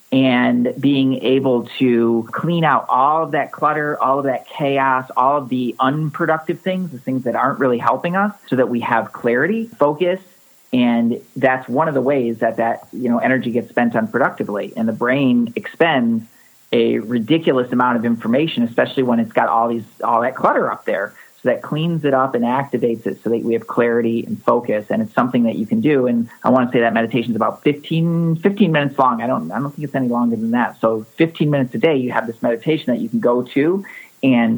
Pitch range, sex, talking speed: 120-165 Hz, male, 215 wpm